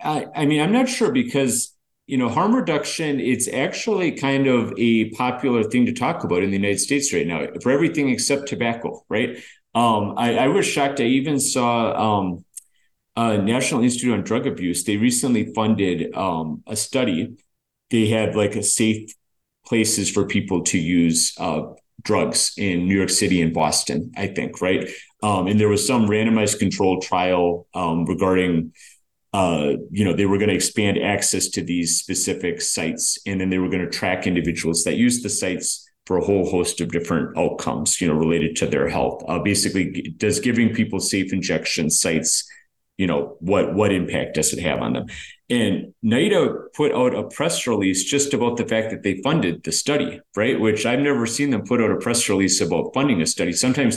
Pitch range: 90-125 Hz